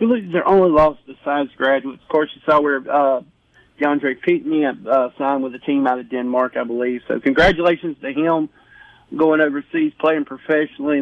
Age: 40-59